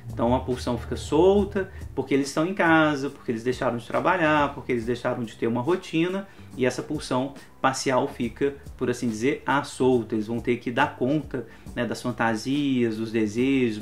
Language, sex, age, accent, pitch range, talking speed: Portuguese, male, 30-49, Brazilian, 120-155 Hz, 185 wpm